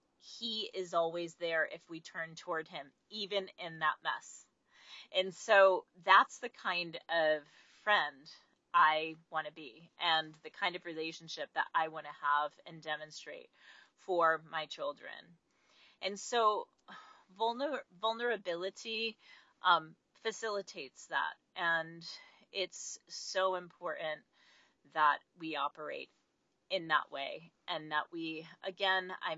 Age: 30-49